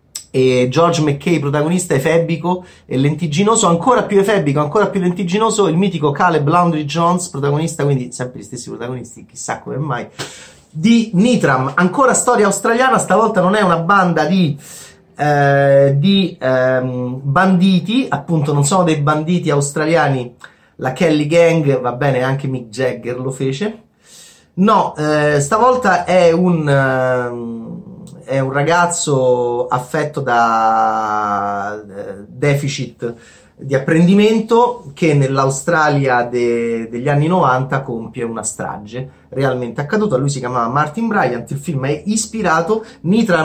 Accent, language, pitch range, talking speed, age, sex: native, Italian, 130-180 Hz, 130 wpm, 30-49, male